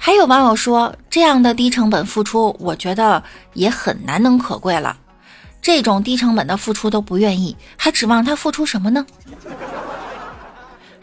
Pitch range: 205-290 Hz